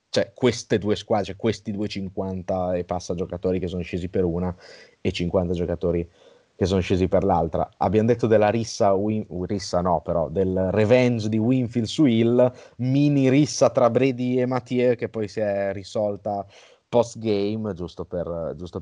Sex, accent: male, native